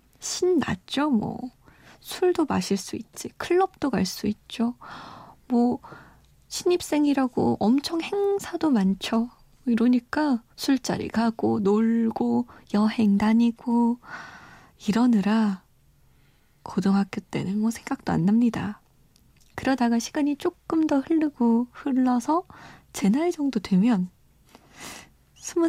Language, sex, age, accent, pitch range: Korean, female, 20-39, native, 195-255 Hz